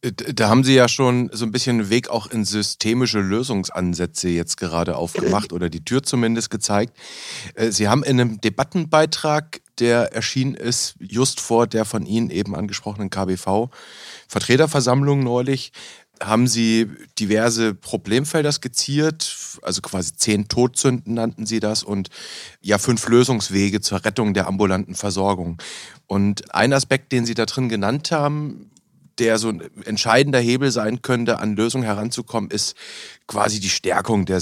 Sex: male